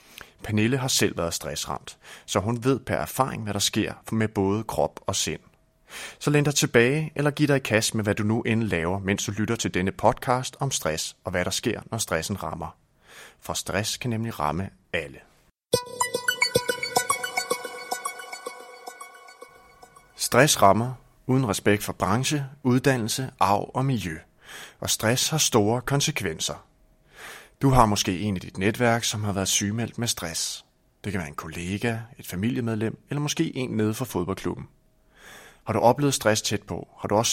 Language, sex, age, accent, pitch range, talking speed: Danish, male, 30-49, native, 100-130 Hz, 165 wpm